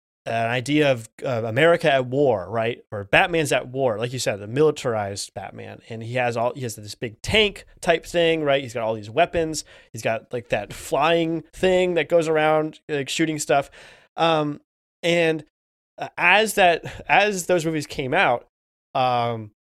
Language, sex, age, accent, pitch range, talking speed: English, male, 20-39, American, 120-155 Hz, 180 wpm